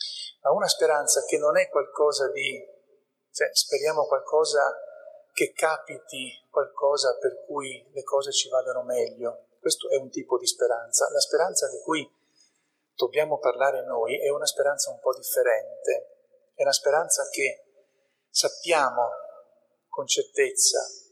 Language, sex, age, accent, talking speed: Italian, male, 40-59, native, 130 wpm